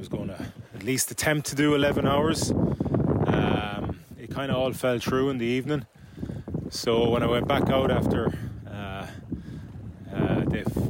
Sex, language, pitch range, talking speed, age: male, English, 105-130 Hz, 155 wpm, 20-39